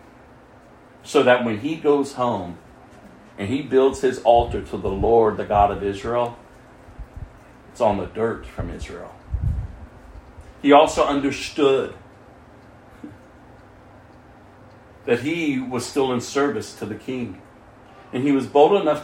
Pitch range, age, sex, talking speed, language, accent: 115-145 Hz, 40-59, male, 130 wpm, English, American